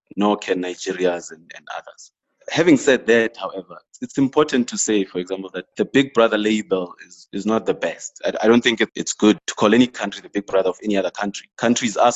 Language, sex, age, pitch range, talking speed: English, male, 30-49, 90-105 Hz, 220 wpm